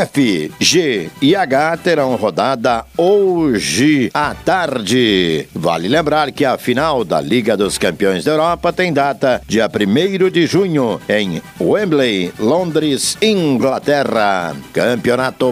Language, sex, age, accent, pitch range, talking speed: Portuguese, male, 60-79, Brazilian, 130-160 Hz, 120 wpm